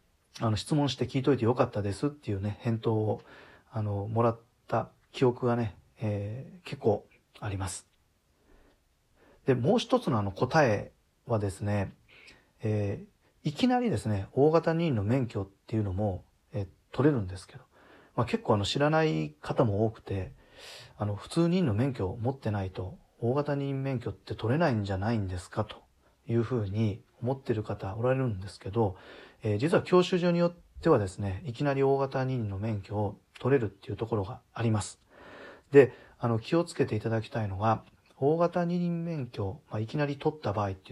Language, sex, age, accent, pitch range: Japanese, male, 40-59, native, 105-140 Hz